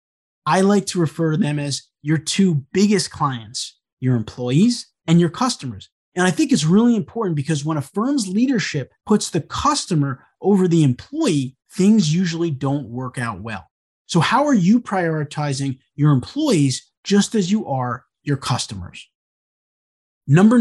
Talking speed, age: 155 wpm, 20-39